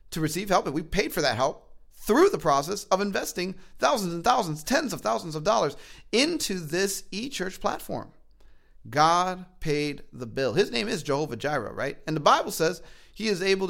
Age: 30-49